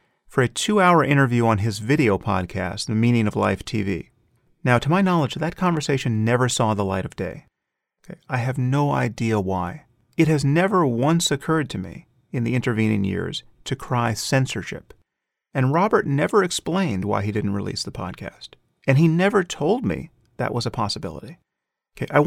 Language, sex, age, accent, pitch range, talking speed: English, male, 40-59, American, 110-155 Hz, 175 wpm